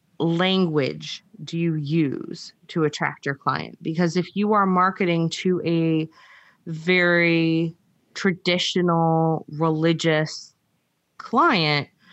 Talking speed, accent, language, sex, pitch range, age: 95 wpm, American, English, female, 150-185 Hz, 30-49